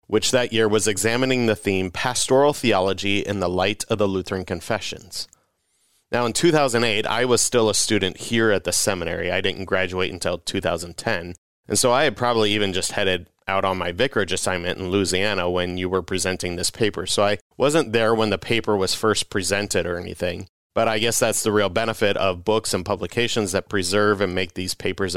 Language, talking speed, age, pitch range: English, 200 wpm, 30-49, 95-110 Hz